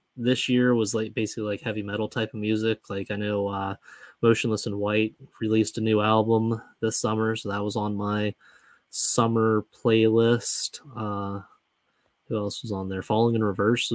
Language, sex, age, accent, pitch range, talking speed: English, male, 20-39, American, 100-115 Hz, 170 wpm